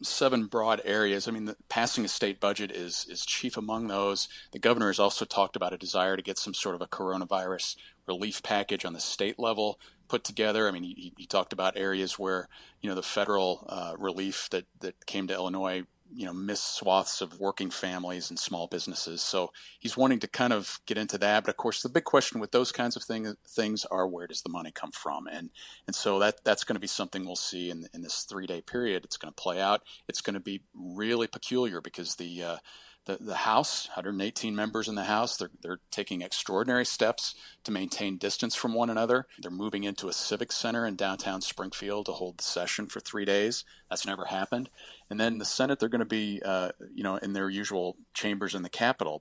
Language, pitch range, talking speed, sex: English, 95-110 Hz, 220 wpm, male